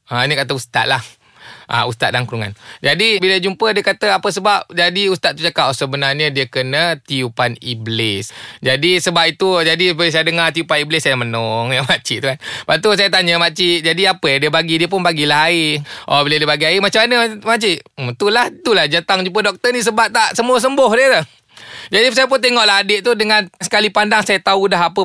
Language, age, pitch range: Malay, 20-39, 155-215 Hz